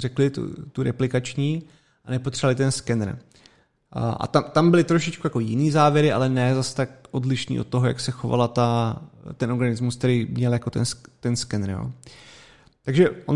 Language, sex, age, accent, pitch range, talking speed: Czech, male, 30-49, native, 125-150 Hz, 165 wpm